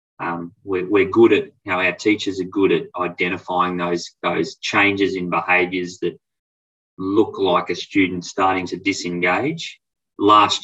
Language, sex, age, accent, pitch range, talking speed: English, male, 20-39, Australian, 90-100 Hz, 160 wpm